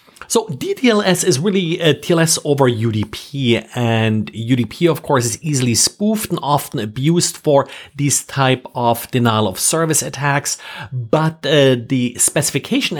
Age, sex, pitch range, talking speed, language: 40-59, male, 120-165 Hz, 140 wpm, English